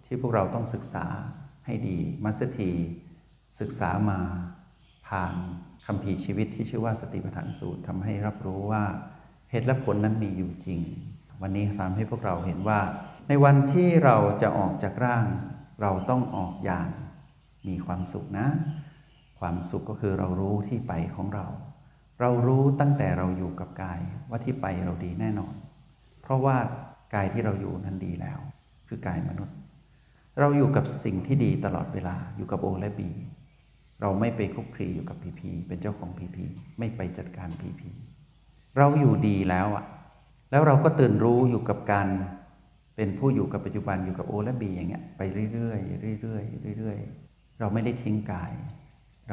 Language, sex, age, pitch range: Thai, male, 60-79, 95-130 Hz